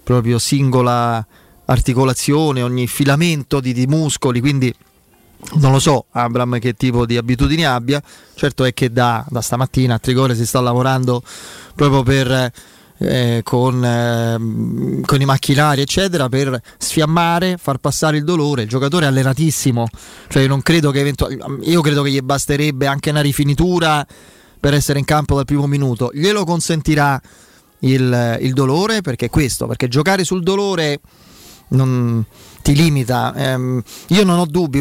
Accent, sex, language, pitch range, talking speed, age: native, male, Italian, 130-155 Hz, 150 wpm, 20-39